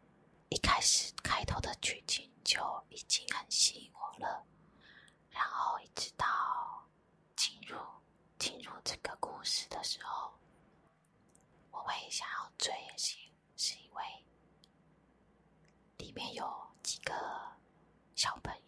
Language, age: Chinese, 20-39